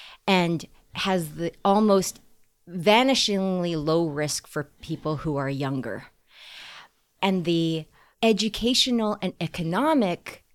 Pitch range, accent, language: 155-220 Hz, American, English